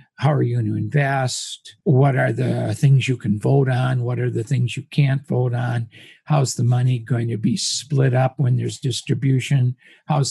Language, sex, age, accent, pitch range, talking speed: English, male, 60-79, American, 125-160 Hz, 200 wpm